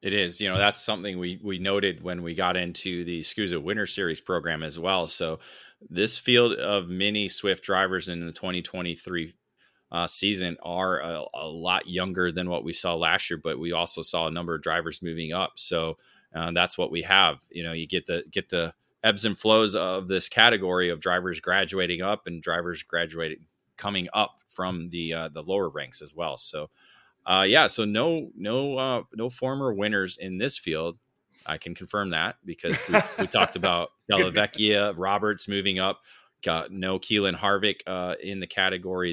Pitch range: 85-100 Hz